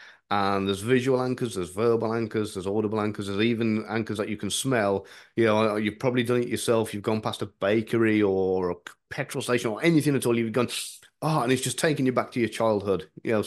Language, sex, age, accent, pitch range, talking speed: English, male, 30-49, British, 95-120 Hz, 230 wpm